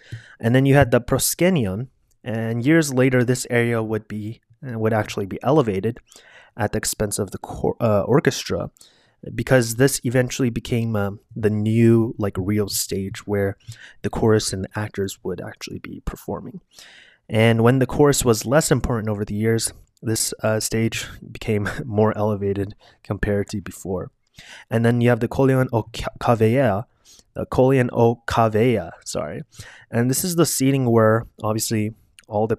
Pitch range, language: 105-120 Hz, English